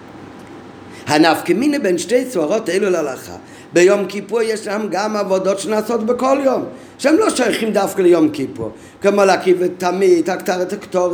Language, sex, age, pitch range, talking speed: Hebrew, male, 50-69, 170-225 Hz, 145 wpm